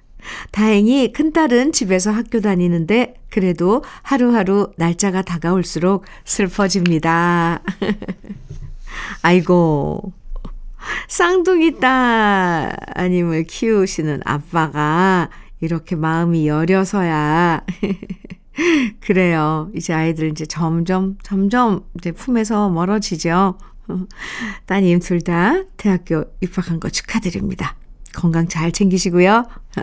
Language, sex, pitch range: Korean, female, 175-235 Hz